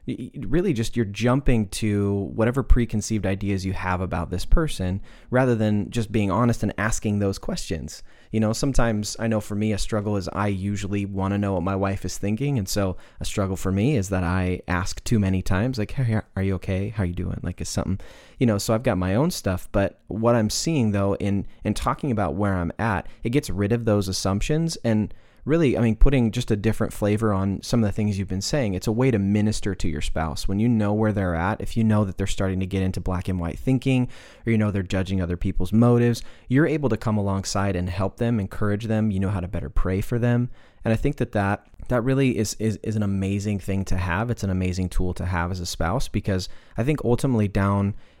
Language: English